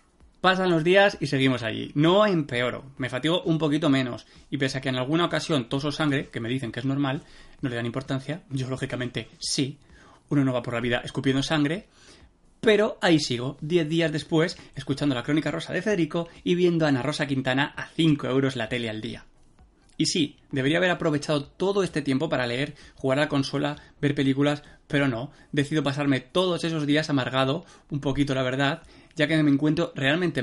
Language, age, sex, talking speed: Spanish, 20-39, male, 200 wpm